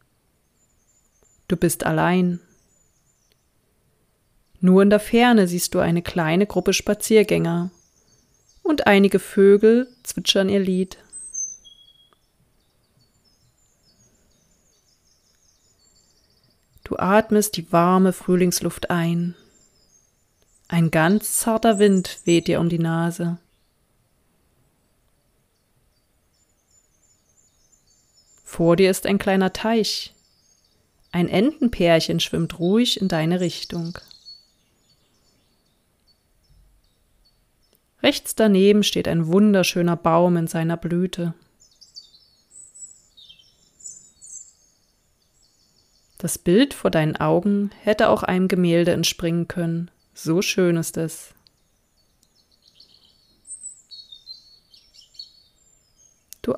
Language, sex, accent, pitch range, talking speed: German, female, German, 170-200 Hz, 75 wpm